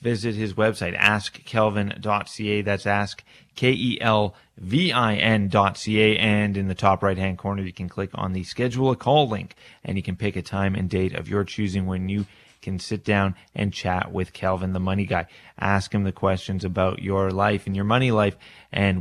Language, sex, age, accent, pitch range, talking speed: English, male, 30-49, American, 95-110 Hz, 180 wpm